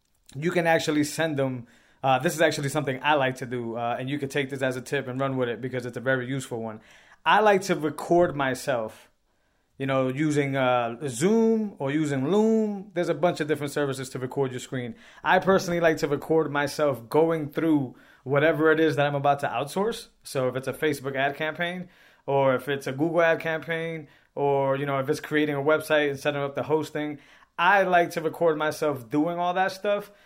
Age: 20-39